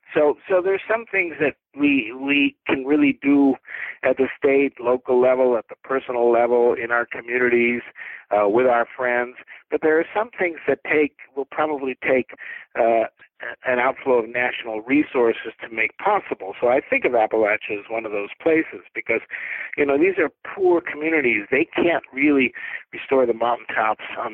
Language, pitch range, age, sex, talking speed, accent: English, 120-165 Hz, 50-69, male, 175 wpm, American